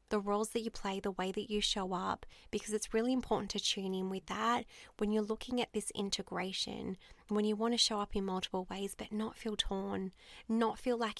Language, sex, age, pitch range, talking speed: English, female, 20-39, 190-220 Hz, 225 wpm